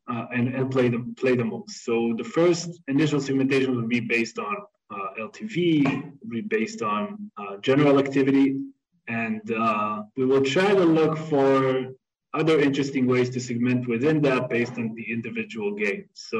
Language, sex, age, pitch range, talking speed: English, male, 20-39, 120-160 Hz, 170 wpm